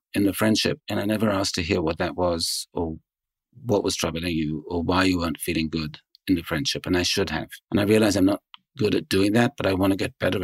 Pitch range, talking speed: 90-115 Hz, 260 wpm